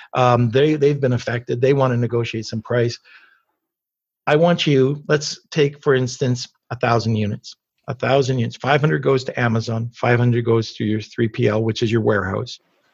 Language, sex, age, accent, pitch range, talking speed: English, male, 50-69, American, 120-145 Hz, 175 wpm